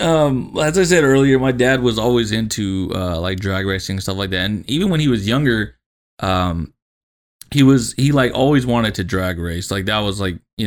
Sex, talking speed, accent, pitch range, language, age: male, 220 wpm, American, 95-120 Hz, English, 20-39